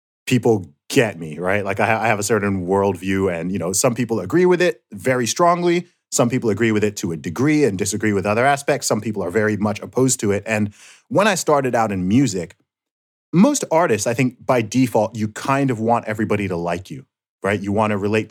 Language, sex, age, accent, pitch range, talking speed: English, male, 30-49, American, 100-130 Hz, 220 wpm